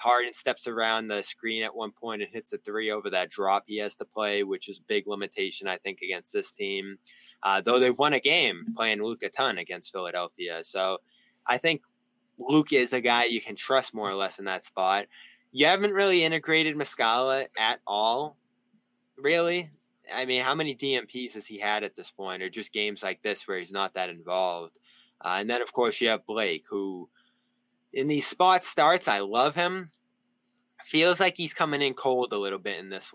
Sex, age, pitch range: male, 20-39, 110-180 Hz